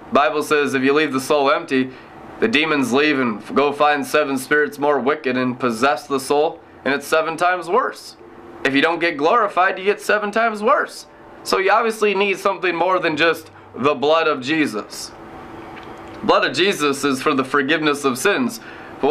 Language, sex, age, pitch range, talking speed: English, male, 20-39, 145-210 Hz, 190 wpm